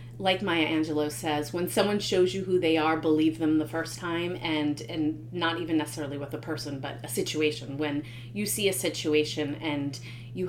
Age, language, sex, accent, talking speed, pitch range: 30-49, English, female, American, 195 wpm, 120-180 Hz